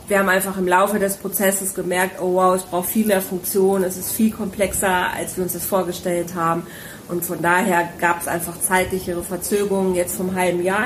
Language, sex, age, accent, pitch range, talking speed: German, female, 30-49, German, 180-210 Hz, 205 wpm